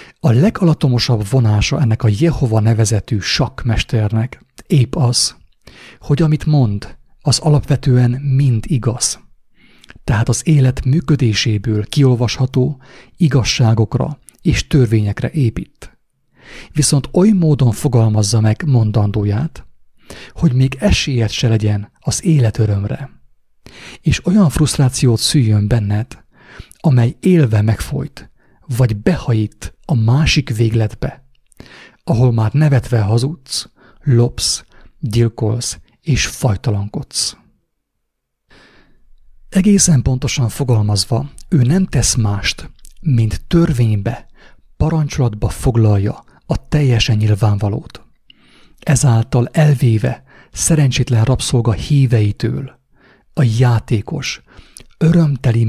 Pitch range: 110-140 Hz